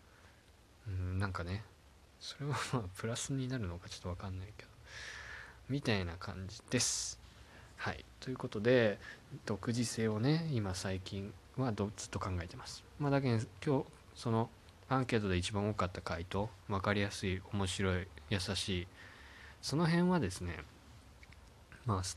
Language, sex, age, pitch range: Japanese, male, 20-39, 90-120 Hz